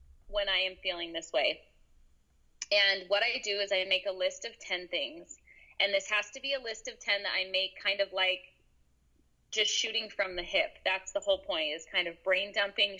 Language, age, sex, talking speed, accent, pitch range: English, 20-39, female, 215 wpm, American, 185-235 Hz